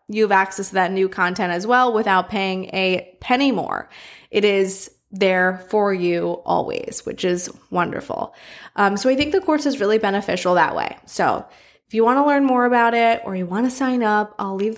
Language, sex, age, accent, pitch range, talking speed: English, female, 20-39, American, 195-245 Hz, 205 wpm